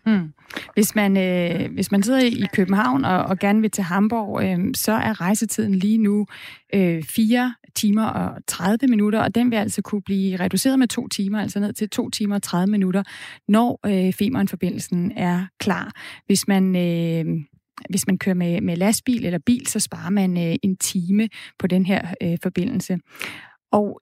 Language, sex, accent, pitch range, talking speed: Danish, female, native, 185-220 Hz, 180 wpm